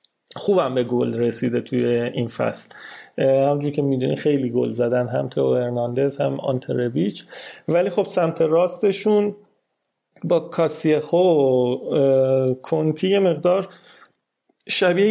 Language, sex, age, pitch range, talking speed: Persian, male, 30-49, 130-180 Hz, 115 wpm